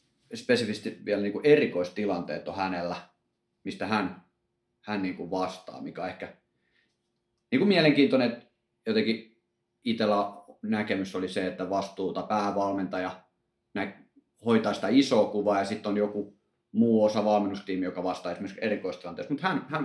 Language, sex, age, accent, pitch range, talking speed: Finnish, male, 30-49, native, 95-115 Hz, 125 wpm